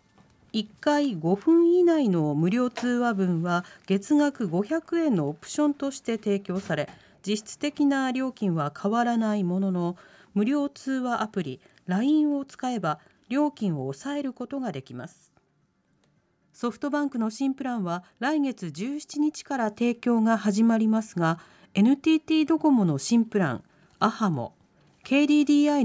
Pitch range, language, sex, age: 185-275 Hz, Japanese, female, 40-59